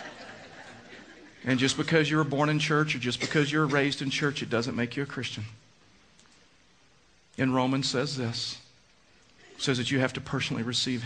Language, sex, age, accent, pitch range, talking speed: English, male, 50-69, American, 120-150 Hz, 180 wpm